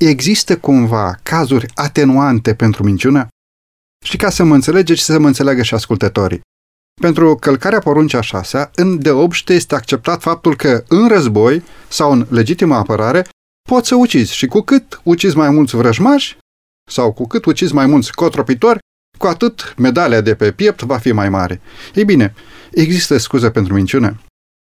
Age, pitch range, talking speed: 30-49, 115-165 Hz, 160 wpm